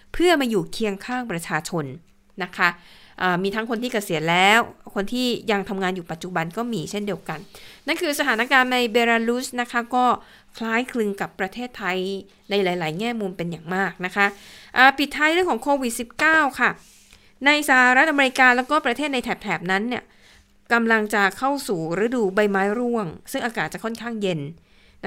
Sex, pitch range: female, 200-255 Hz